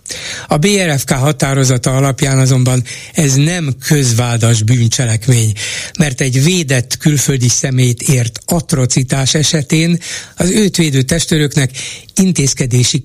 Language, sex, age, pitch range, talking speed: Hungarian, male, 60-79, 125-150 Hz, 100 wpm